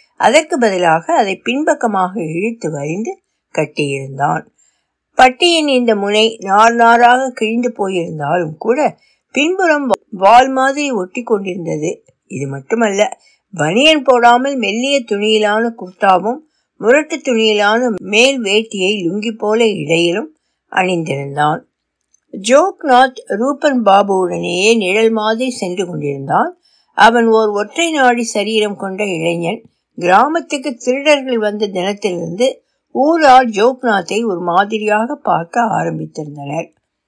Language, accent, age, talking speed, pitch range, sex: Tamil, native, 60-79, 75 wpm, 185-265 Hz, female